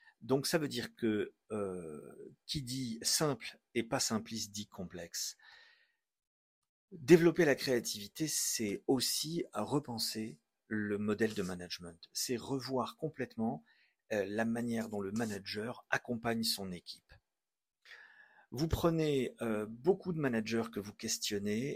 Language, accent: French, French